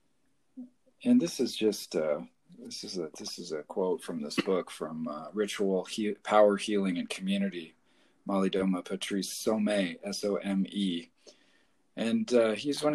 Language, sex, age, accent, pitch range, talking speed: English, male, 40-59, American, 90-145 Hz, 160 wpm